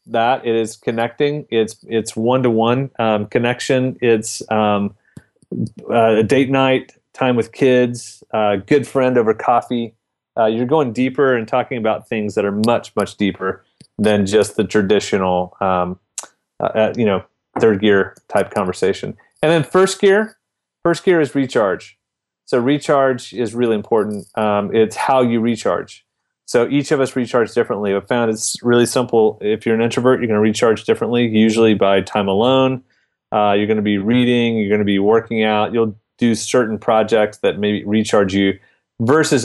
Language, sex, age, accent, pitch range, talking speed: English, male, 30-49, American, 105-125 Hz, 165 wpm